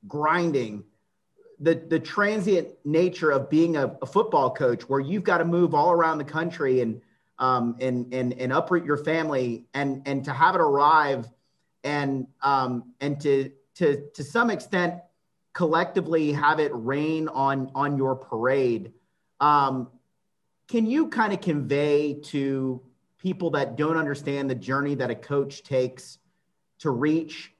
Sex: male